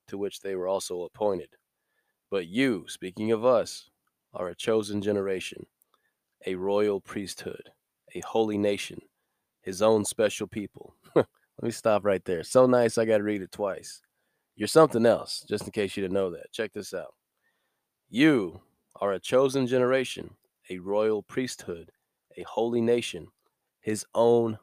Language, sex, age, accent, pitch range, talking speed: English, male, 30-49, American, 95-115 Hz, 155 wpm